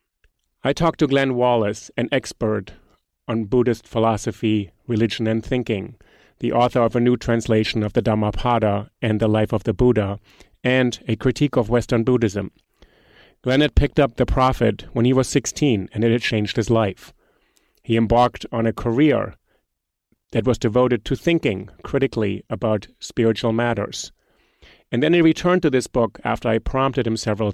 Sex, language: male, English